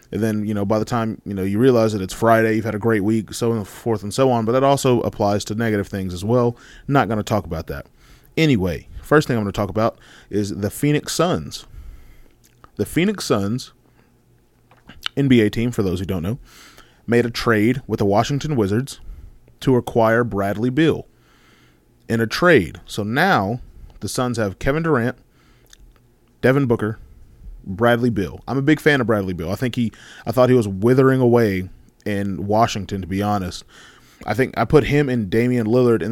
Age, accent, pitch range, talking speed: 30-49, American, 100-125 Hz, 195 wpm